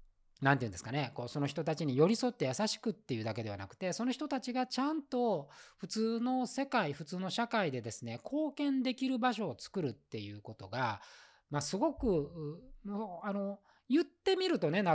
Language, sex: Japanese, male